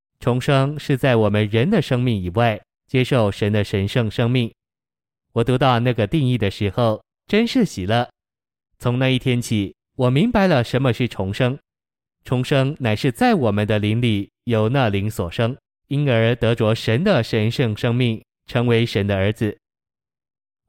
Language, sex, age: Chinese, male, 20-39